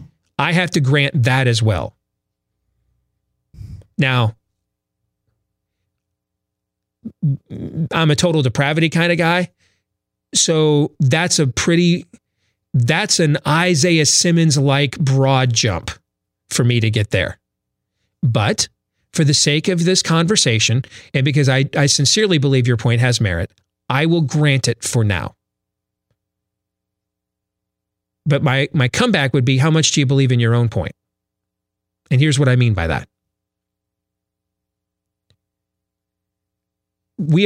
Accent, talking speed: American, 120 wpm